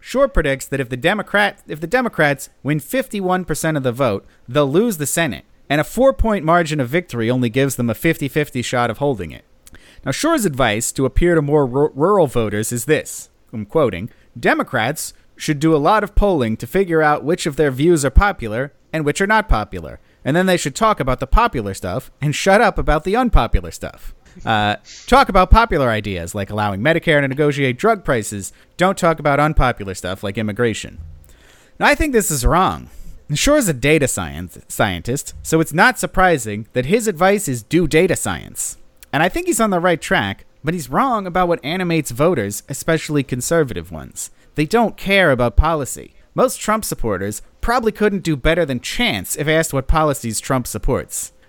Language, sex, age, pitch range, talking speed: English, male, 40-59, 120-180 Hz, 190 wpm